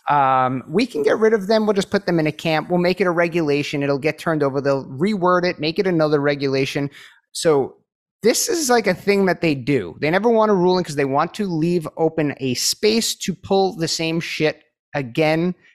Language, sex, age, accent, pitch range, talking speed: English, male, 30-49, American, 150-195 Hz, 220 wpm